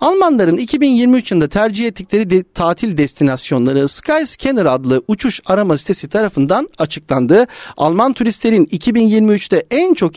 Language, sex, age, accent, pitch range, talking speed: Turkish, male, 40-59, native, 165-240 Hz, 110 wpm